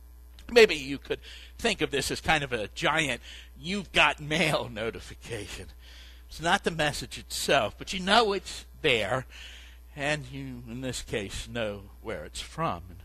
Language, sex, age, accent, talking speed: English, male, 60-79, American, 160 wpm